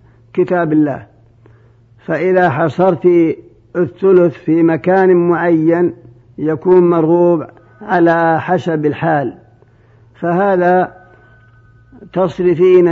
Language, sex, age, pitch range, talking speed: Arabic, male, 50-69, 155-175 Hz, 70 wpm